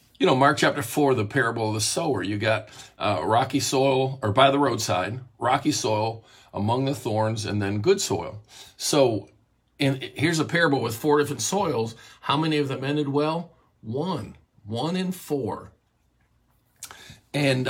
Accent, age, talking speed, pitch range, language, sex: American, 50-69, 165 wpm, 105-135 Hz, English, male